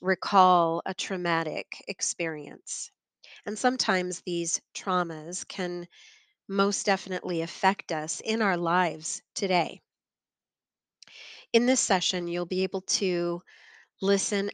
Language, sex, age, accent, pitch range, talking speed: English, female, 40-59, American, 175-200 Hz, 105 wpm